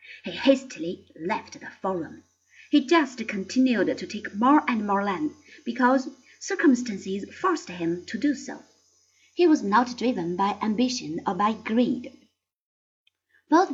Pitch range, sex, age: 200-290 Hz, female, 30-49